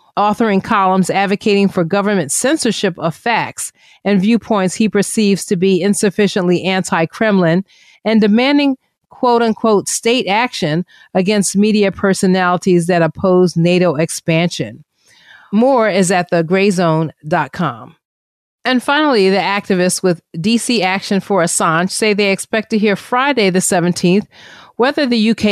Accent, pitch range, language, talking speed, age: American, 180-220 Hz, English, 120 wpm, 40-59